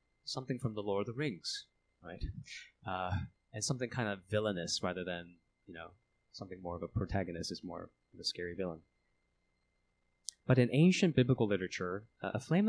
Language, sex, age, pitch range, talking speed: English, male, 30-49, 90-130 Hz, 175 wpm